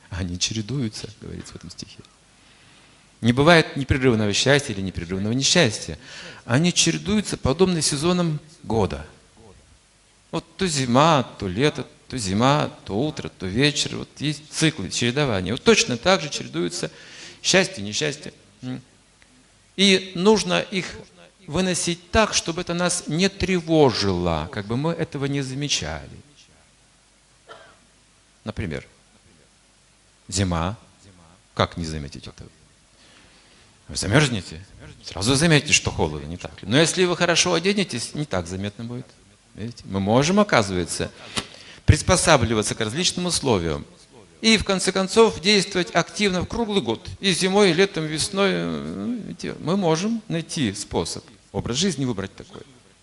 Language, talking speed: Russian, 125 wpm